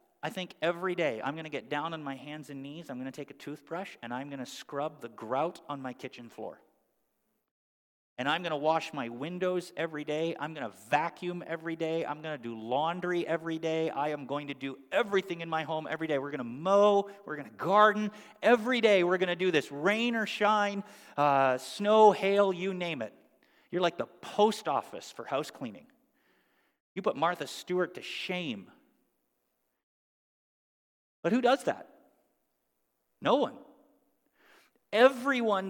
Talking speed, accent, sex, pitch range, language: 180 wpm, American, male, 155-210 Hz, English